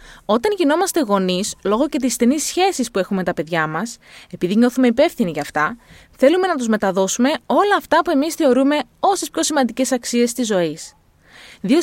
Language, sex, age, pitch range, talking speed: Greek, female, 20-39, 210-310 Hz, 180 wpm